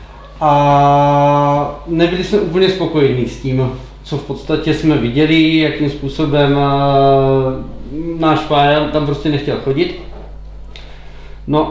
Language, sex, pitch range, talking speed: Czech, male, 140-160 Hz, 110 wpm